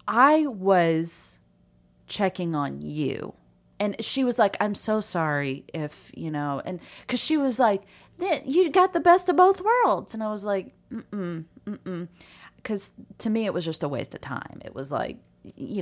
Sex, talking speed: female, 180 wpm